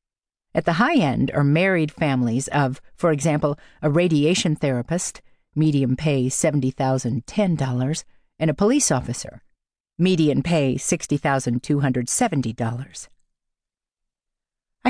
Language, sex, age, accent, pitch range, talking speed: English, female, 50-69, American, 135-185 Hz, 95 wpm